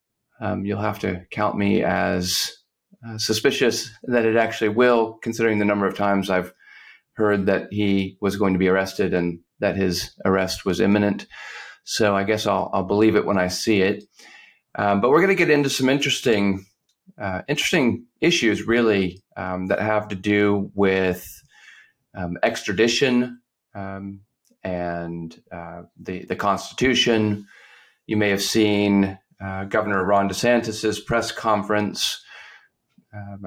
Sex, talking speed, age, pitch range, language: male, 145 wpm, 30-49, 95-110 Hz, English